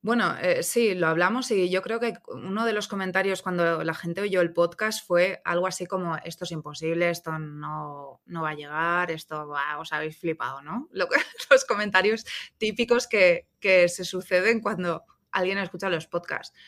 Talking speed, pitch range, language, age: 180 wpm, 165-195 Hz, Spanish, 20-39